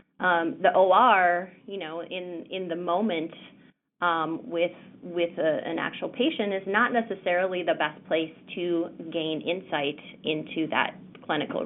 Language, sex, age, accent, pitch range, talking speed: English, female, 30-49, American, 165-195 Hz, 145 wpm